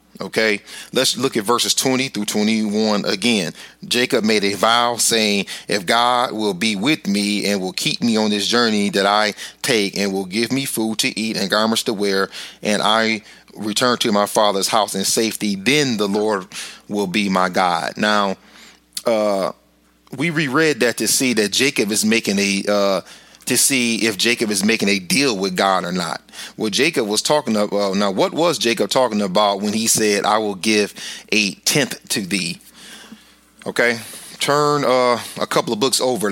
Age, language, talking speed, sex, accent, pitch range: 30-49, English, 185 wpm, male, American, 100-120 Hz